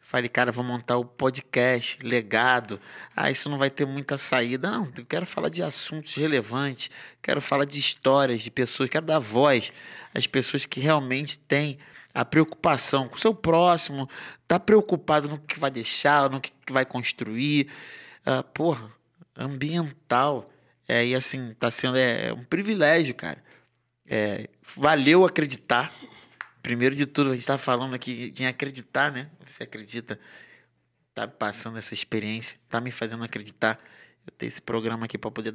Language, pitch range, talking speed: Portuguese, 120-150 Hz, 155 wpm